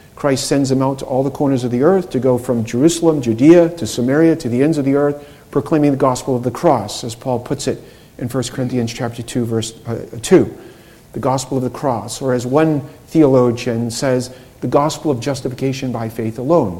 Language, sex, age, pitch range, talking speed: English, male, 50-69, 125-165 Hz, 210 wpm